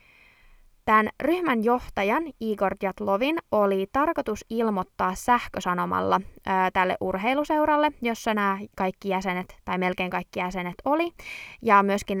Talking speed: 115 wpm